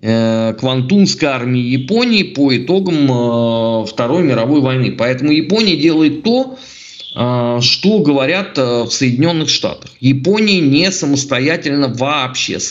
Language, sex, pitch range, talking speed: Russian, male, 125-175 Hz, 105 wpm